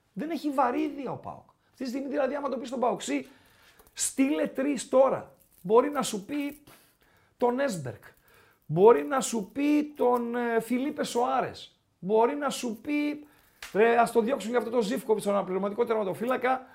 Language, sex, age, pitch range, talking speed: Greek, male, 40-59, 190-260 Hz, 160 wpm